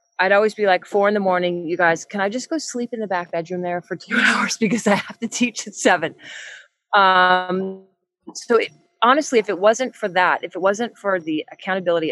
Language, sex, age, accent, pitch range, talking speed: English, female, 30-49, American, 145-190 Hz, 220 wpm